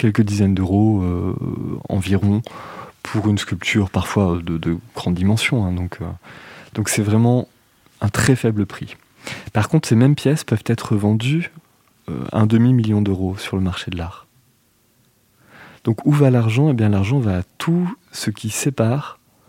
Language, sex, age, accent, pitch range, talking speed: French, male, 20-39, French, 100-130 Hz, 165 wpm